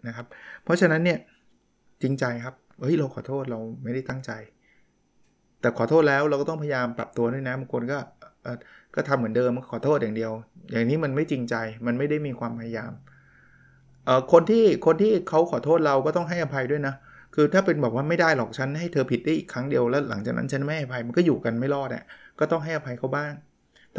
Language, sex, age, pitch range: Thai, male, 20-39, 120-155 Hz